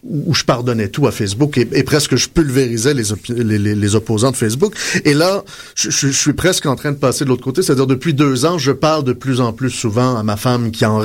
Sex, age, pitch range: male, 30-49, 115-150 Hz